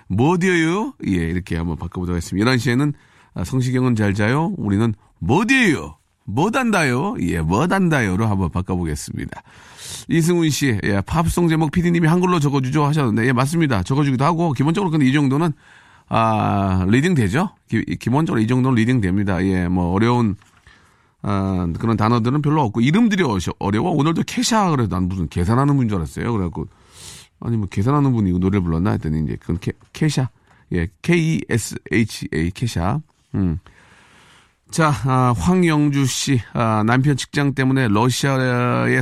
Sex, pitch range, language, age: male, 95-145 Hz, Korean, 40-59